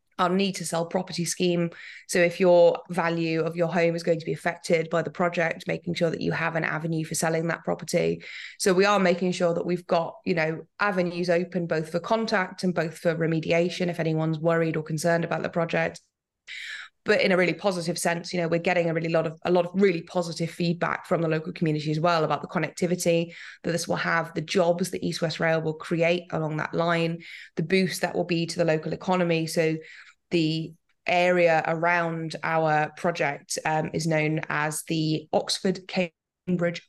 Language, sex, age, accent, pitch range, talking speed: English, female, 20-39, British, 160-180 Hz, 200 wpm